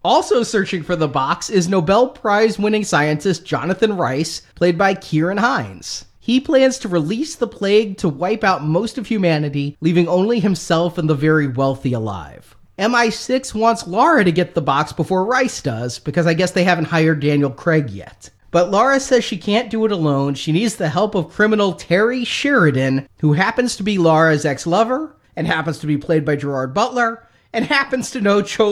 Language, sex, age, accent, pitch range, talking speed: English, male, 30-49, American, 155-210 Hz, 185 wpm